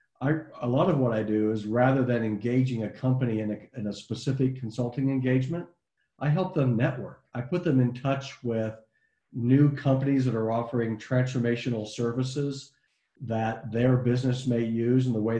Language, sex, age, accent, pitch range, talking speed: English, male, 50-69, American, 110-135 Hz, 170 wpm